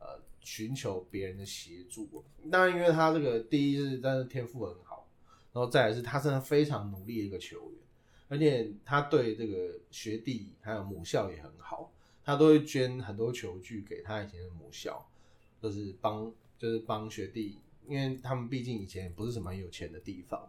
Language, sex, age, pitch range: Chinese, male, 20-39, 105-145 Hz